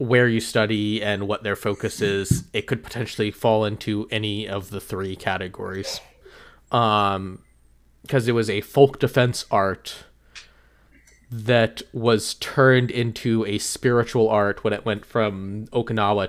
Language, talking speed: English, 140 wpm